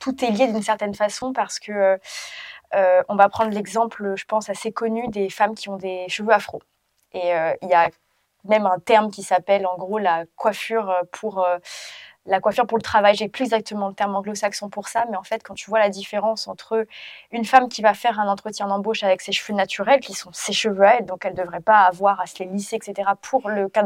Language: French